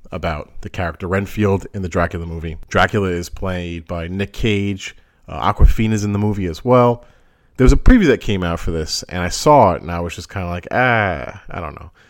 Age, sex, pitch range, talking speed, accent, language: 40-59, male, 90-115 Hz, 225 wpm, American, English